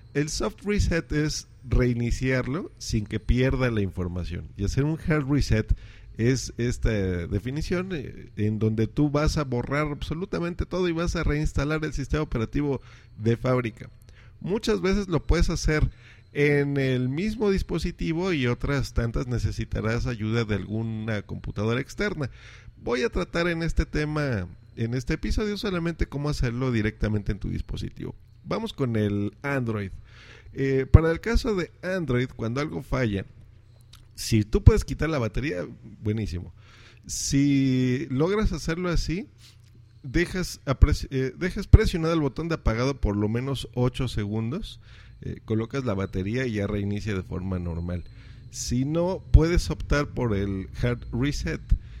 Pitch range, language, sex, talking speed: 110-150 Hz, Spanish, male, 145 wpm